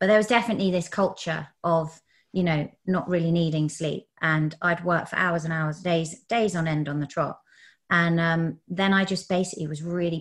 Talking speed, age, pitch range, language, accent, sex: 205 wpm, 30-49, 160-200 Hz, English, British, female